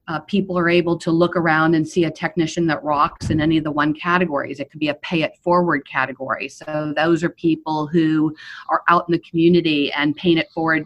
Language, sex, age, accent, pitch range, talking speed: English, female, 40-59, American, 150-185 Hz, 225 wpm